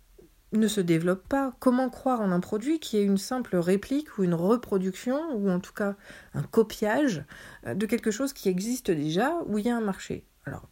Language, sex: French, female